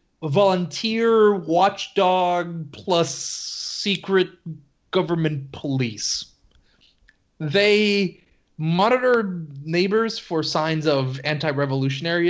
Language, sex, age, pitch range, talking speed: English, male, 30-49, 140-180 Hz, 65 wpm